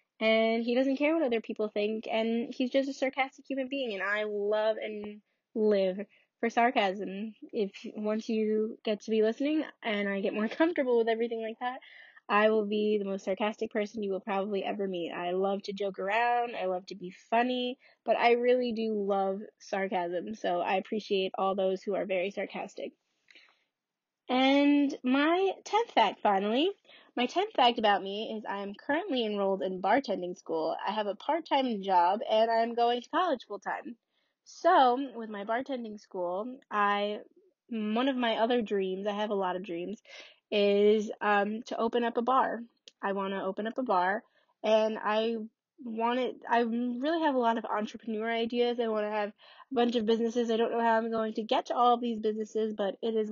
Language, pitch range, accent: English, 205-245 Hz, American